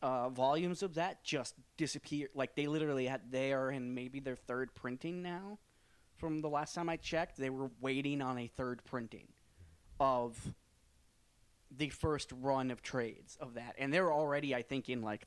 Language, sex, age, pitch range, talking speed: English, male, 20-39, 120-150 Hz, 175 wpm